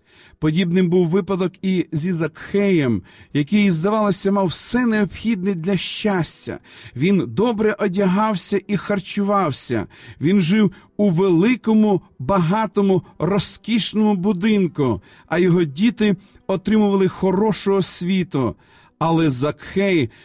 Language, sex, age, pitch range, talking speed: Ukrainian, male, 40-59, 155-205 Hz, 100 wpm